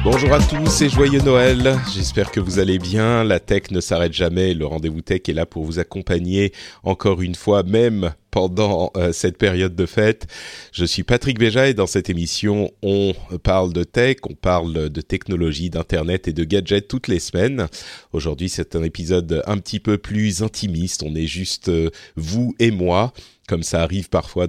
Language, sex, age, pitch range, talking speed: French, male, 30-49, 90-115 Hz, 185 wpm